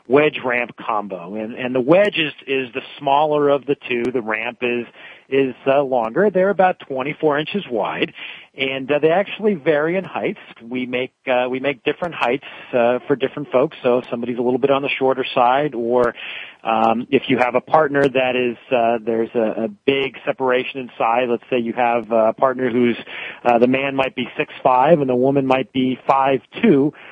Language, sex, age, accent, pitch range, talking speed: English, male, 40-59, American, 120-140 Hz, 200 wpm